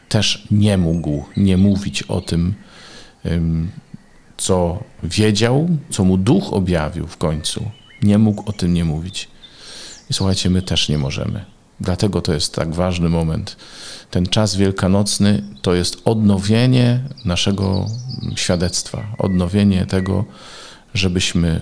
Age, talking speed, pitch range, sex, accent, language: 40-59, 120 wpm, 85-105 Hz, male, native, Polish